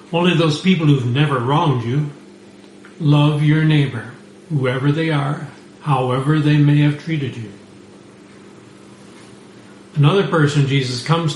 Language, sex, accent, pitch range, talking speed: English, male, American, 130-165 Hz, 120 wpm